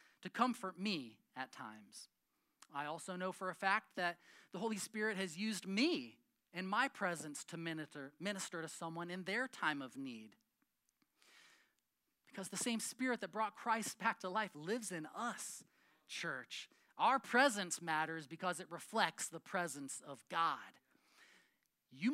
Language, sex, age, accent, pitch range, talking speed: English, male, 30-49, American, 165-220 Hz, 150 wpm